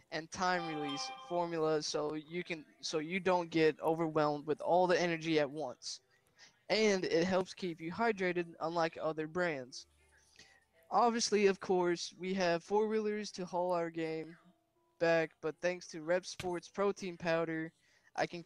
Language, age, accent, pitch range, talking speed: English, 20-39, American, 160-185 Hz, 155 wpm